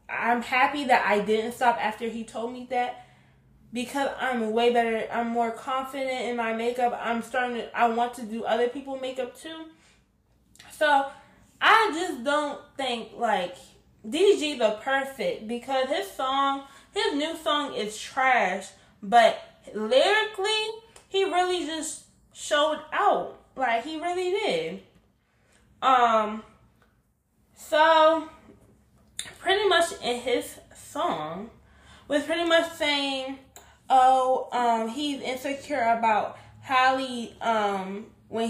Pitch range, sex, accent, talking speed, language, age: 230-300 Hz, female, American, 125 wpm, English, 20-39